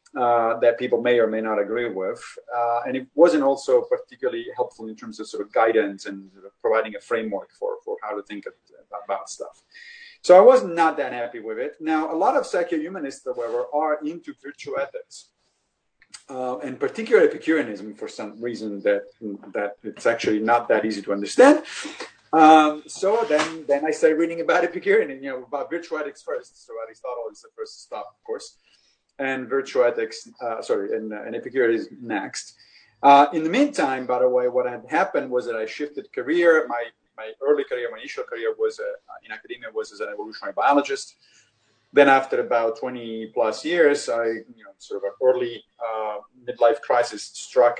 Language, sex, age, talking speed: English, male, 30-49, 190 wpm